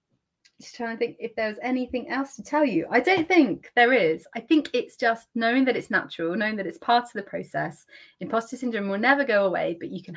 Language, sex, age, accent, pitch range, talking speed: English, female, 30-49, British, 190-265 Hz, 240 wpm